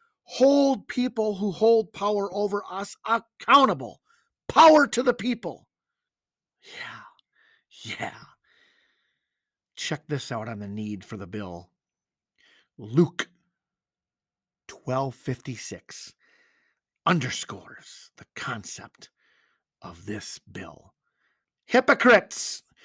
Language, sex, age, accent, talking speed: English, male, 50-69, American, 85 wpm